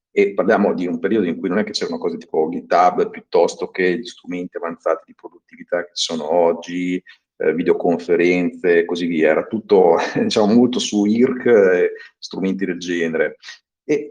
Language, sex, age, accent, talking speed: Italian, male, 50-69, native, 170 wpm